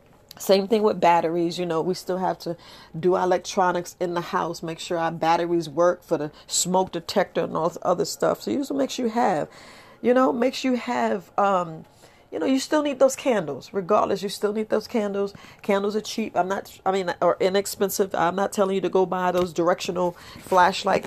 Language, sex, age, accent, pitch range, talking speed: English, female, 40-59, American, 170-205 Hz, 210 wpm